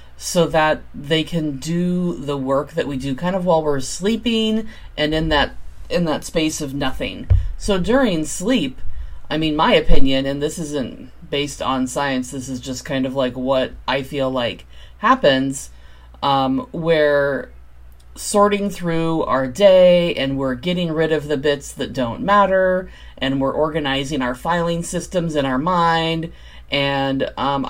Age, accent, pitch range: 30-49, American, 130-165 Hz